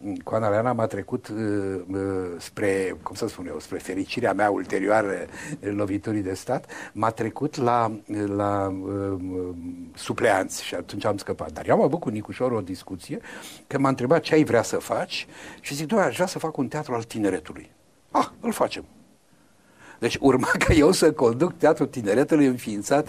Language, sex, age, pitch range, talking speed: Romanian, male, 60-79, 100-140 Hz, 185 wpm